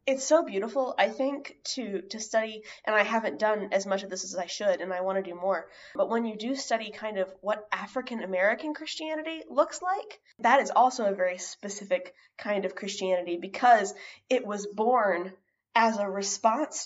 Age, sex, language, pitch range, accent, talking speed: 10-29, female, English, 195-265 Hz, American, 190 wpm